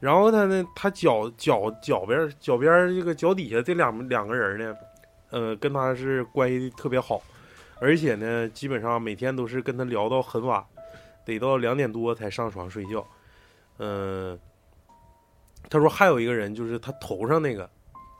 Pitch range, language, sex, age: 110-155 Hz, Chinese, male, 20-39